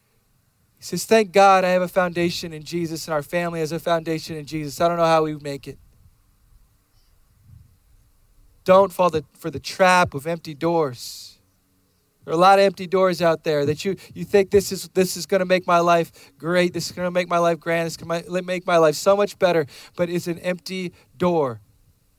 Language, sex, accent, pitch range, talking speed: English, male, American, 120-185 Hz, 210 wpm